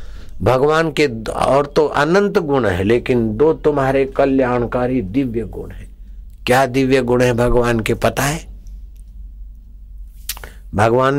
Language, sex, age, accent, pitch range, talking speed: Hindi, male, 60-79, native, 90-140 Hz, 125 wpm